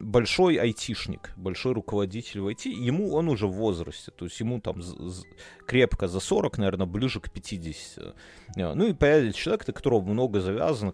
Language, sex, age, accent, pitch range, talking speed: Russian, male, 30-49, native, 95-125 Hz, 175 wpm